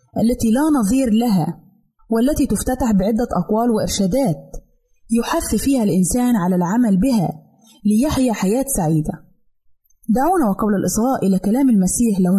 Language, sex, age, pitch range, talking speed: Arabic, female, 20-39, 195-255 Hz, 120 wpm